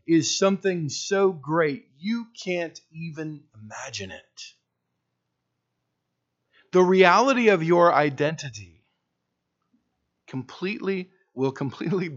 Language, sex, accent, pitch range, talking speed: English, male, American, 115-195 Hz, 85 wpm